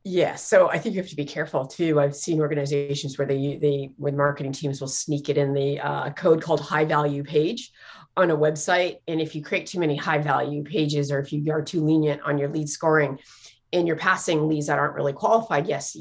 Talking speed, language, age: 230 wpm, English, 30-49